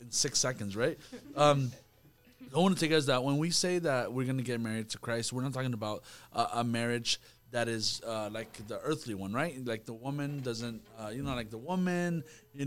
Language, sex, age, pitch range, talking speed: English, male, 20-39, 120-145 Hz, 225 wpm